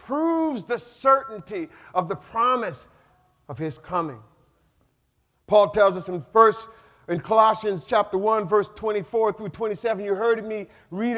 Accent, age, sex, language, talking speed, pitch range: American, 50-69, male, English, 135 wpm, 145-205 Hz